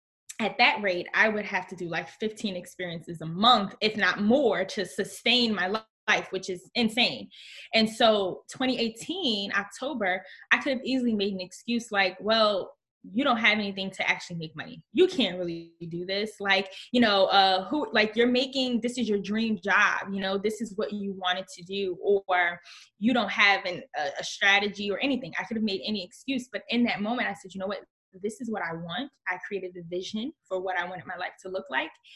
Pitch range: 185-220 Hz